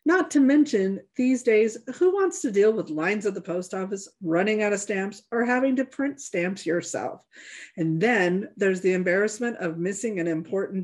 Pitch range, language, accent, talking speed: 185-255 Hz, English, American, 190 wpm